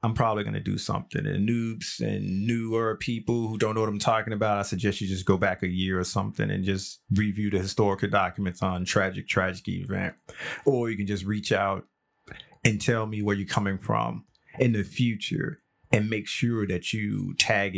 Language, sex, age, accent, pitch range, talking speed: English, male, 30-49, American, 100-120 Hz, 205 wpm